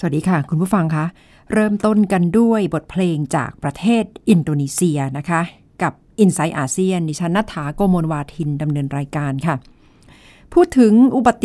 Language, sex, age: Thai, female, 60-79